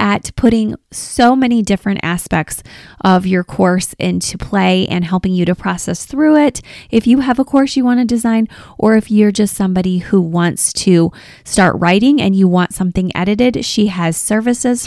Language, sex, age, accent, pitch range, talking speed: English, female, 20-39, American, 175-220 Hz, 180 wpm